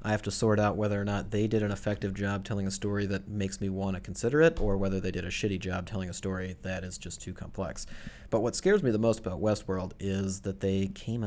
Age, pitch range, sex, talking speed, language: 30-49, 95-105 Hz, male, 265 wpm, English